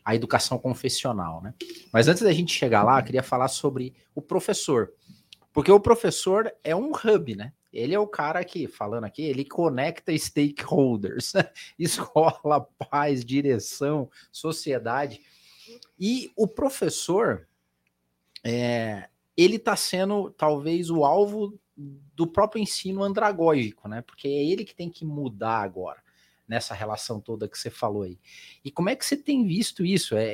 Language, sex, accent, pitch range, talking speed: Portuguese, male, Brazilian, 120-175 Hz, 150 wpm